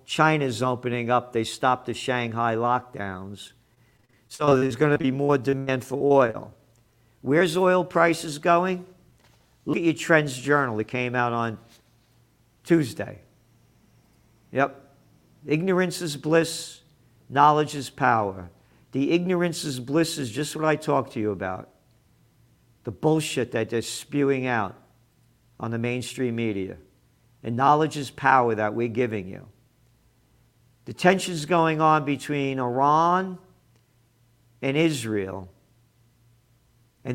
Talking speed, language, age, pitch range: 125 wpm, English, 50-69, 120-150 Hz